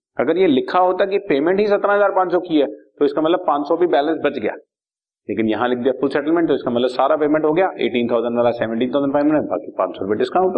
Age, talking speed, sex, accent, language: 40-59, 245 wpm, male, native, Hindi